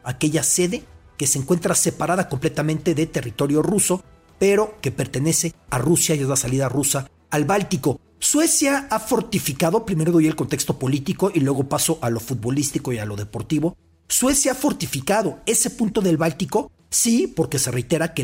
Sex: male